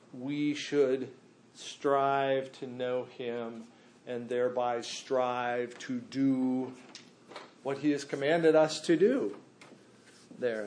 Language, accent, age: English, American, 50-69